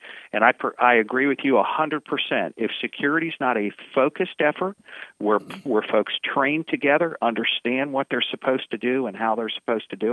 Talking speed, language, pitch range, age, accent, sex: 185 wpm, English, 115-145 Hz, 50-69, American, male